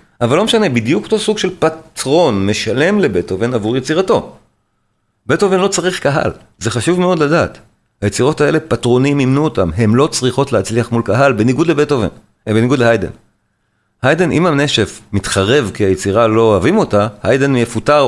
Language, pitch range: Hebrew, 105-150 Hz